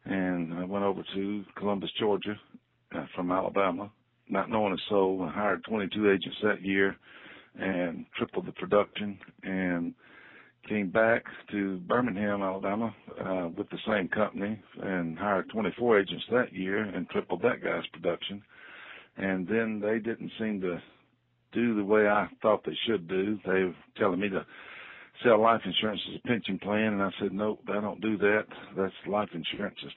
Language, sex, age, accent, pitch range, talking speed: English, male, 60-79, American, 95-105 Hz, 165 wpm